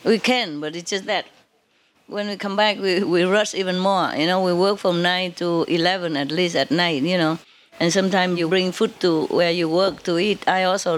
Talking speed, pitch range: 230 wpm, 180-225 Hz